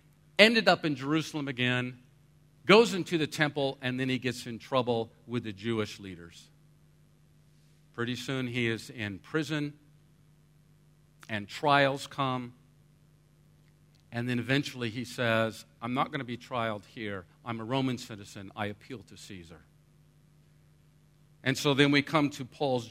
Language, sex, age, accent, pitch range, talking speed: English, male, 50-69, American, 125-150 Hz, 145 wpm